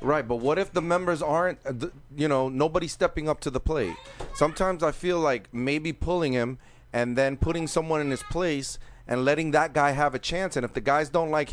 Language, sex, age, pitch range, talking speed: English, male, 30-49, 130-165 Hz, 220 wpm